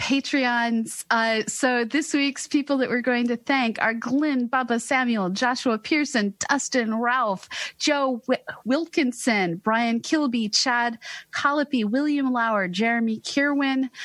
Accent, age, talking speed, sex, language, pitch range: American, 30-49, 130 wpm, female, English, 180-255 Hz